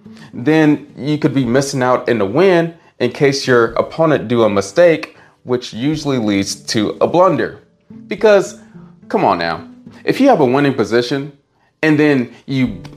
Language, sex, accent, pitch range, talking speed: English, male, American, 115-160 Hz, 160 wpm